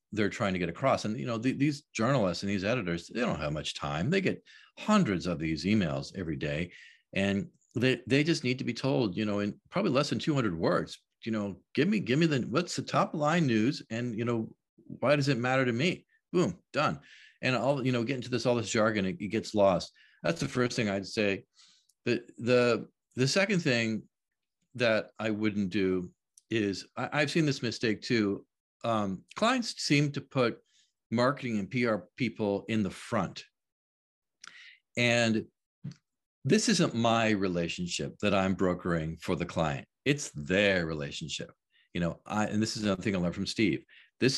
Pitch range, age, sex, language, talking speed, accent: 95-125 Hz, 40-59, male, English, 190 wpm, American